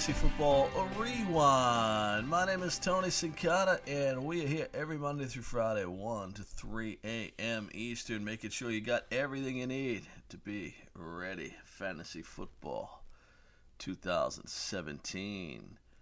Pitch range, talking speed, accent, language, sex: 95-130 Hz, 125 wpm, American, English, male